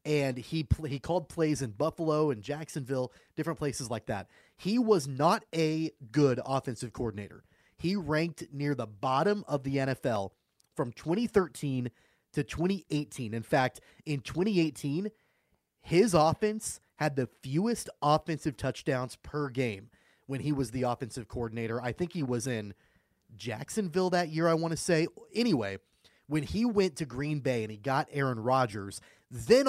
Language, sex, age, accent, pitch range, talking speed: English, male, 30-49, American, 125-165 Hz, 155 wpm